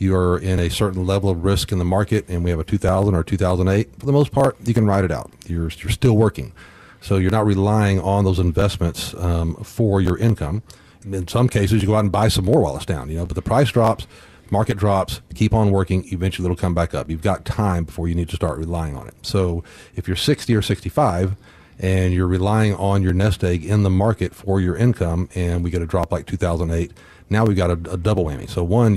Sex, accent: male, American